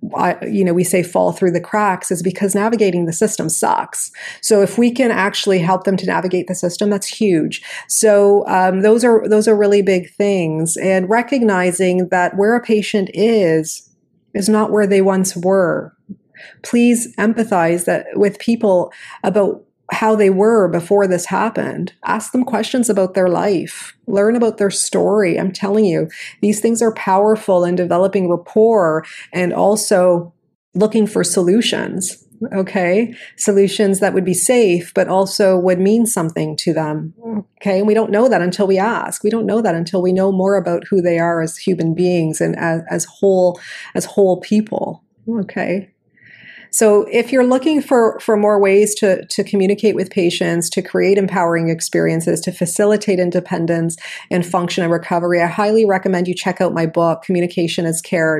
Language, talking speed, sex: English, 170 wpm, female